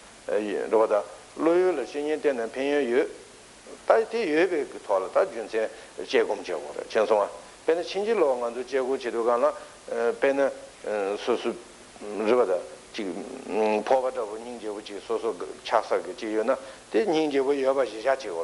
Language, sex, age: Italian, male, 60-79